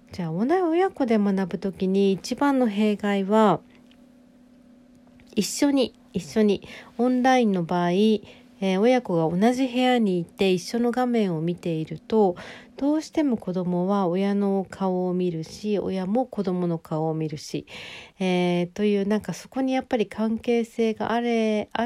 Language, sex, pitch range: Japanese, female, 180-240 Hz